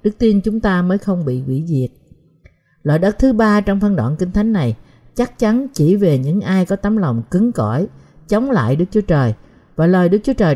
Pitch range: 145-215 Hz